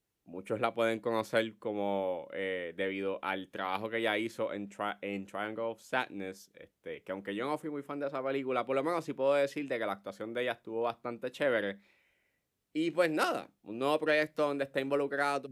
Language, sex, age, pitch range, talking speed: Spanish, male, 20-39, 105-135 Hz, 205 wpm